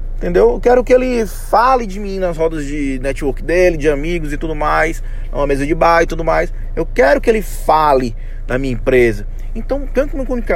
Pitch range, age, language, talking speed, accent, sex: 125-200 Hz, 20-39, Portuguese, 205 wpm, Brazilian, male